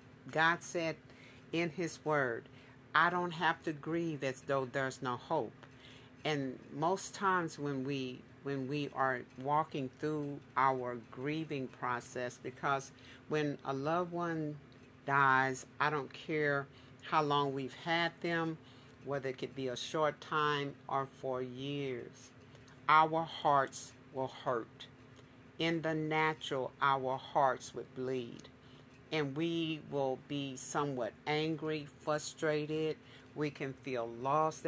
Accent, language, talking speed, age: American, English, 130 wpm, 50-69